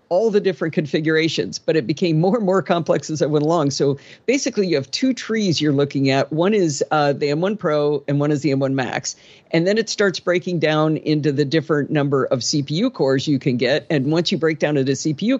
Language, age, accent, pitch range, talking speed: English, 50-69, American, 145-190 Hz, 230 wpm